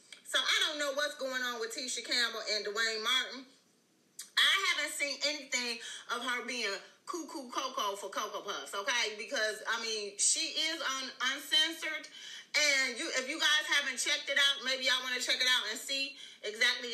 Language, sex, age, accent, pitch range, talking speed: English, female, 30-49, American, 245-310 Hz, 185 wpm